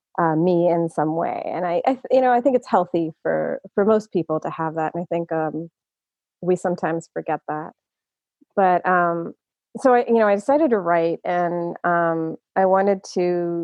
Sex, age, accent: female, 30-49, American